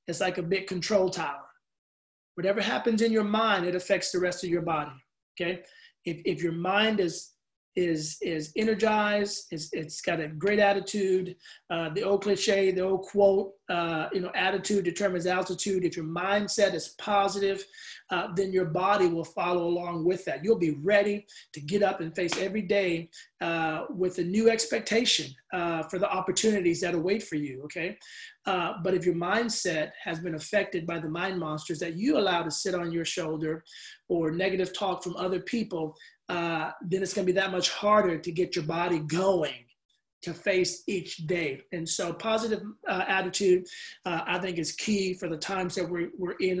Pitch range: 170-205 Hz